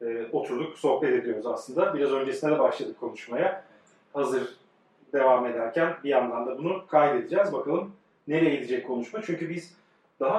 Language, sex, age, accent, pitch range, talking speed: Turkish, male, 40-59, native, 140-190 Hz, 140 wpm